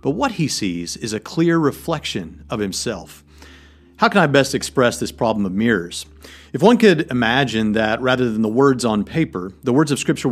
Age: 40-59